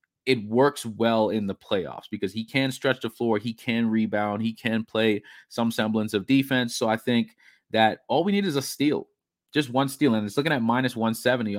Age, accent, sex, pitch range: 20-39, American, male, 110-135 Hz